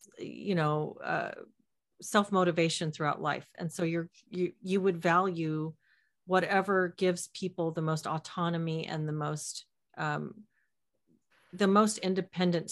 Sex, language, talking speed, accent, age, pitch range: female, English, 125 wpm, American, 40-59, 155-180 Hz